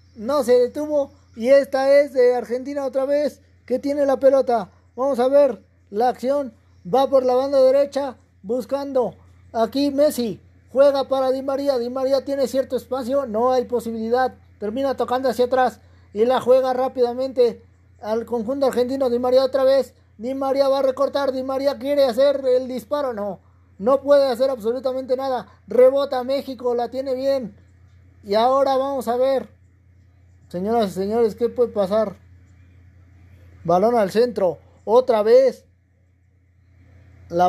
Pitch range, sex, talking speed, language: 210-265 Hz, male, 150 wpm, Spanish